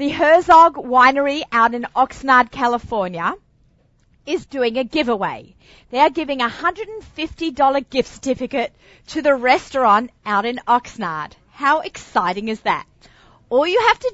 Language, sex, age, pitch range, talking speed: English, female, 40-59, 225-290 Hz, 135 wpm